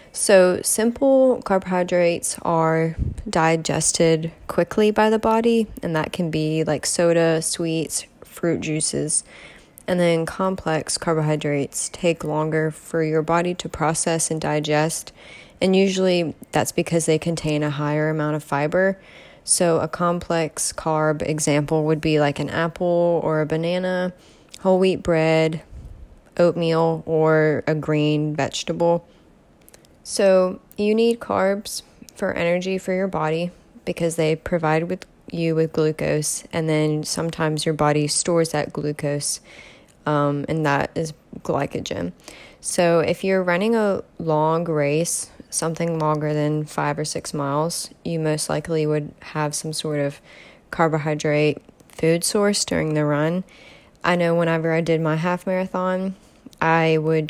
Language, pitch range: English, 155-175 Hz